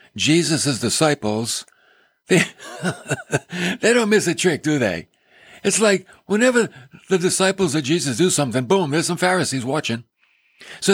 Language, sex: English, male